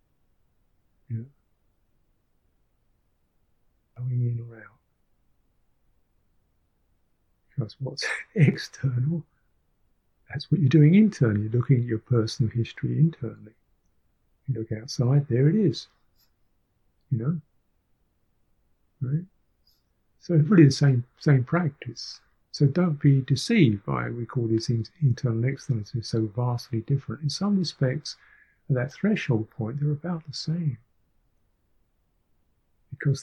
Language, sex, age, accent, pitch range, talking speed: English, male, 50-69, British, 120-155 Hz, 110 wpm